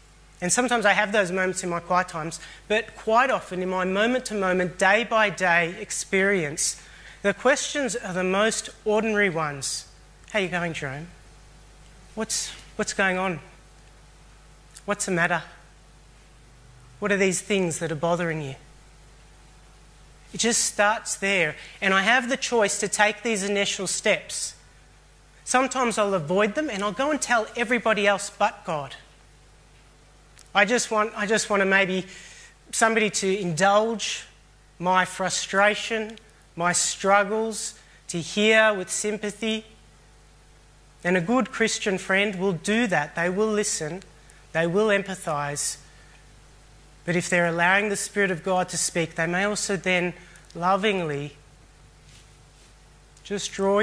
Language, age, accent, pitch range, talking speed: English, 30-49, Australian, 170-210 Hz, 135 wpm